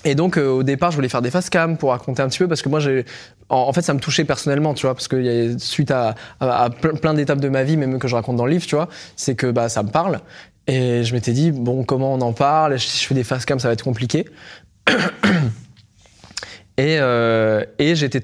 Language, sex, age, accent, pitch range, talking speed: French, male, 20-39, French, 120-150 Hz, 250 wpm